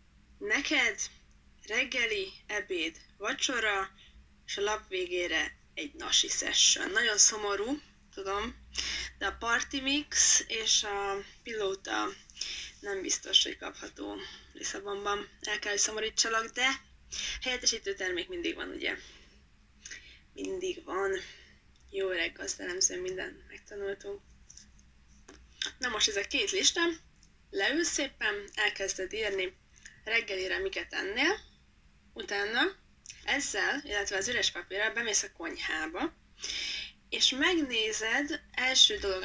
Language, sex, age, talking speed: Hungarian, female, 20-39, 105 wpm